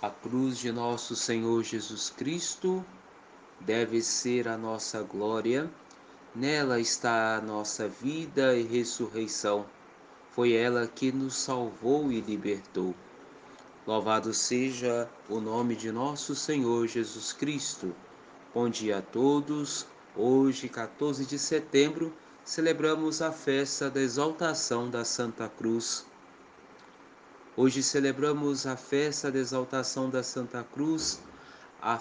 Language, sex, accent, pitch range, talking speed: Portuguese, male, Brazilian, 115-145 Hz, 115 wpm